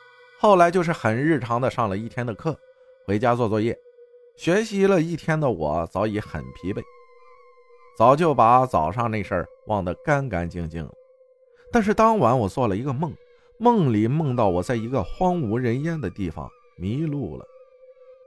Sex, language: male, Chinese